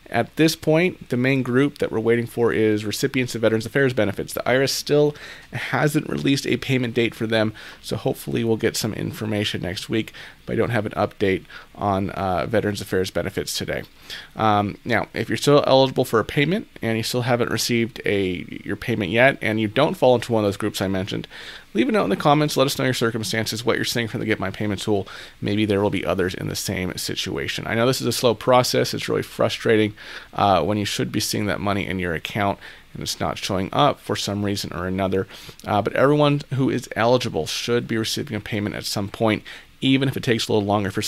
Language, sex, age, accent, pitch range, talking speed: English, male, 30-49, American, 105-125 Hz, 230 wpm